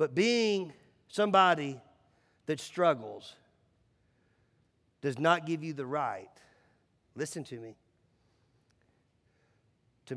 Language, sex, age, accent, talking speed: English, male, 50-69, American, 90 wpm